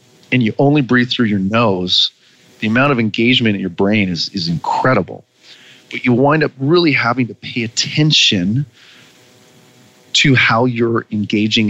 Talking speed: 155 wpm